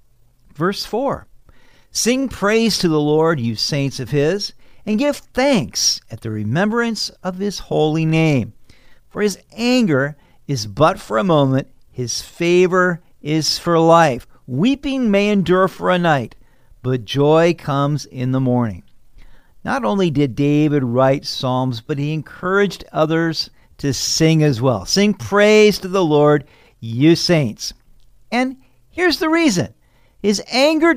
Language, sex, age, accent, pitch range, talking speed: English, male, 50-69, American, 130-190 Hz, 140 wpm